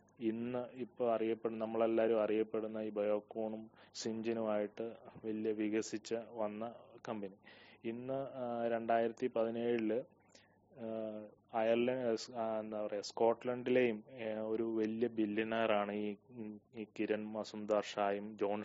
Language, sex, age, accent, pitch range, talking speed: English, male, 20-39, Indian, 110-125 Hz, 70 wpm